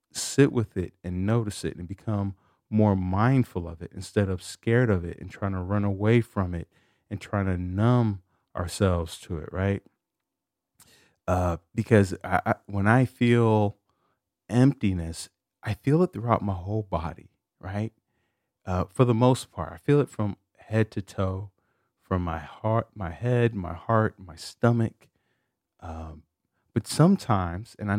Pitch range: 90-125 Hz